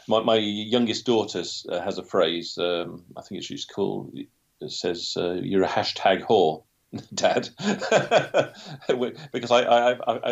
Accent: British